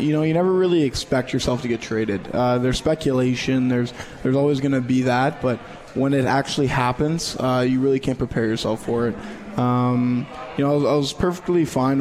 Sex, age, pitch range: male, 20-39, 120-130 Hz